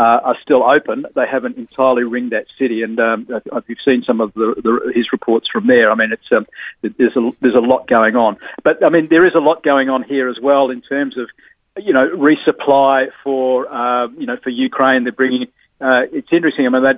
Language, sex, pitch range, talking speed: English, male, 125-145 Hz, 235 wpm